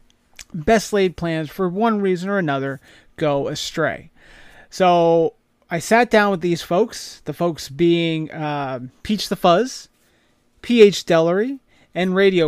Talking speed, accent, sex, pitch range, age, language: 135 wpm, American, male, 150-190 Hz, 30-49, English